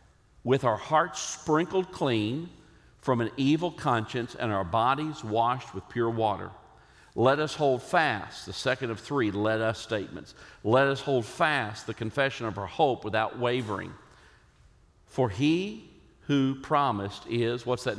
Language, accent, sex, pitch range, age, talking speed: English, American, male, 95-130 Hz, 50-69, 150 wpm